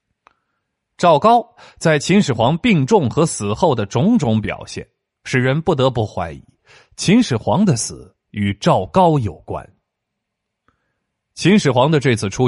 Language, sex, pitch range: Chinese, male, 110-165 Hz